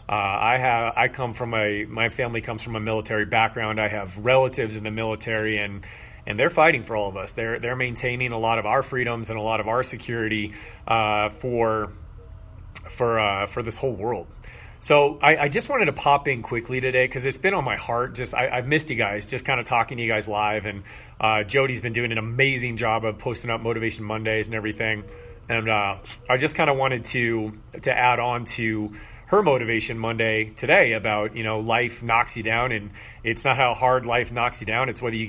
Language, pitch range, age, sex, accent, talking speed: English, 110-125 Hz, 30-49, male, American, 220 wpm